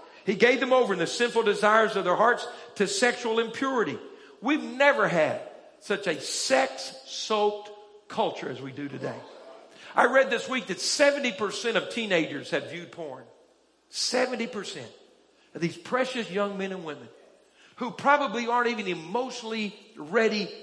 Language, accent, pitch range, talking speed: English, American, 185-255 Hz, 145 wpm